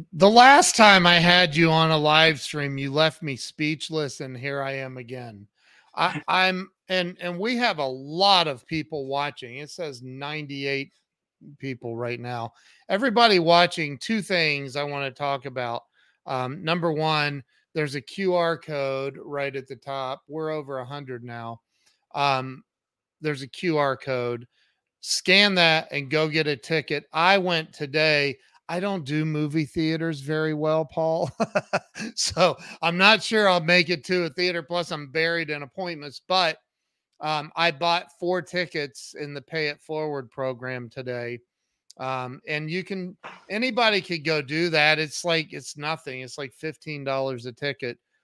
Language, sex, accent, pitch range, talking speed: English, male, American, 140-175 Hz, 160 wpm